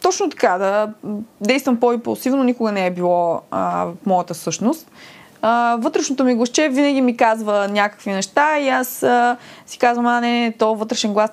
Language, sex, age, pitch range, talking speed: Bulgarian, female, 20-39, 195-240 Hz, 160 wpm